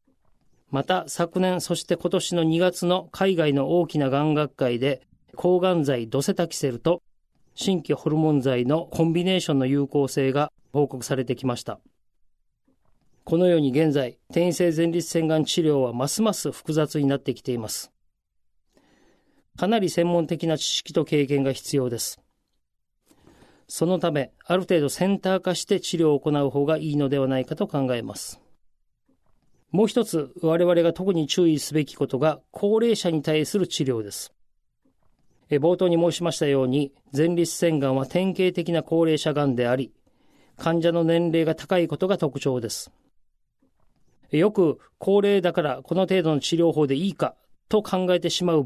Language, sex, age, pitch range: Japanese, male, 40-59, 140-175 Hz